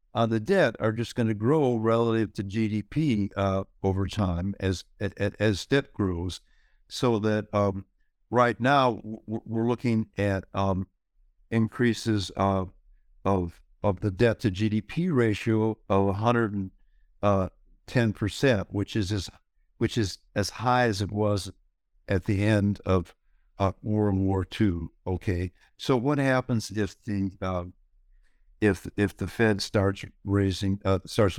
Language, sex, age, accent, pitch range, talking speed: English, male, 60-79, American, 95-115 Hz, 145 wpm